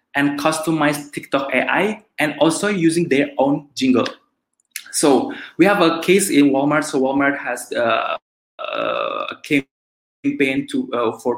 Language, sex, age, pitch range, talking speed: English, male, 20-39, 115-145 Hz, 135 wpm